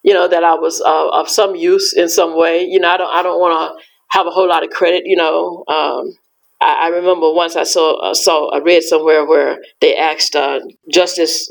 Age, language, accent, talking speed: 50-69, English, American, 235 wpm